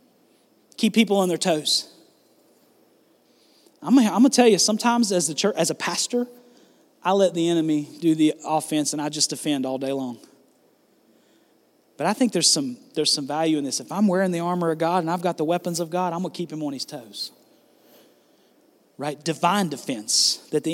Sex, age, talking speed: male, 40-59, 195 wpm